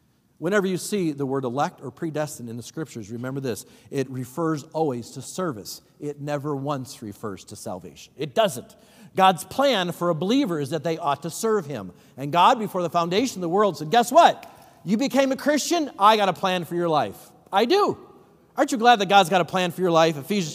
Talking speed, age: 215 wpm, 50-69